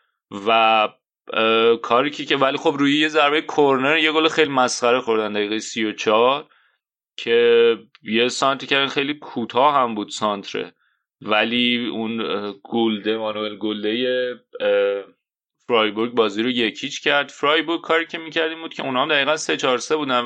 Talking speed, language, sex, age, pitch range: 140 wpm, Persian, male, 30-49, 110-135 Hz